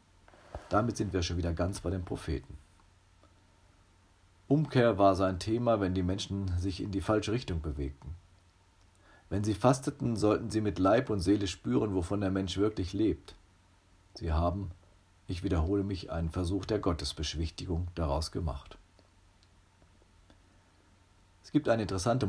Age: 40-59